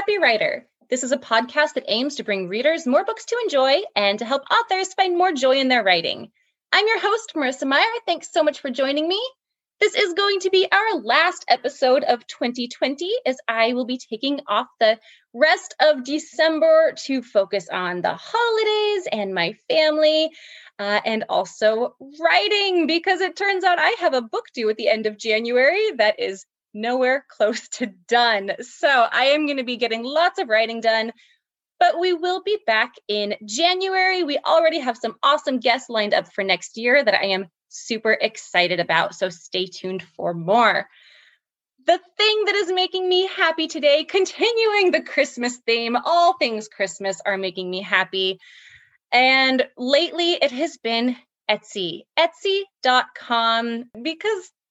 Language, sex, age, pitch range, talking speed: English, female, 20-39, 225-355 Hz, 170 wpm